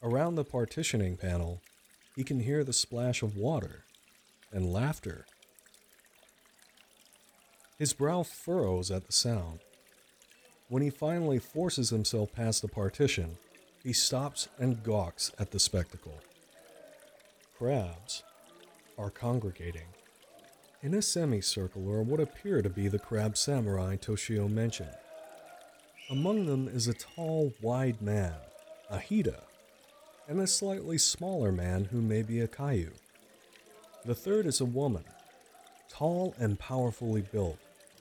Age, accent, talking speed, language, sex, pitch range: 50-69, American, 120 wpm, English, male, 100-145 Hz